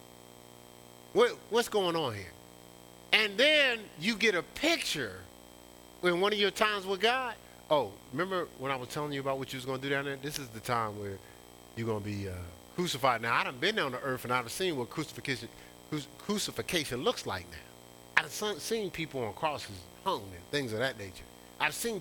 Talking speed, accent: 205 wpm, American